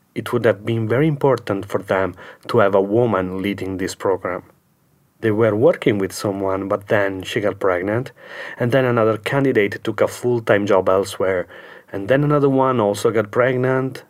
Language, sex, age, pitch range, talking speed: English, male, 30-49, 95-130 Hz, 175 wpm